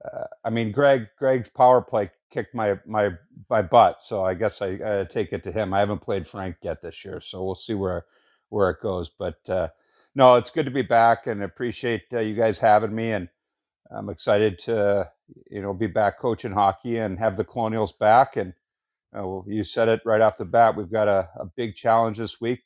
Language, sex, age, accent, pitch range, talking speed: English, male, 50-69, American, 105-115 Hz, 220 wpm